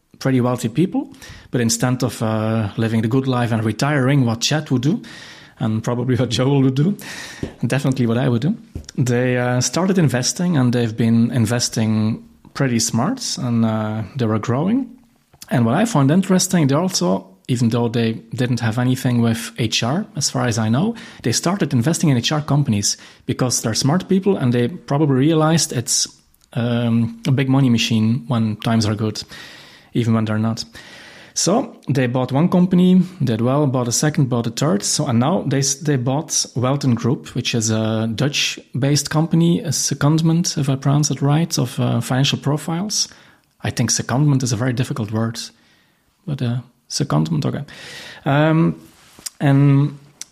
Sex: male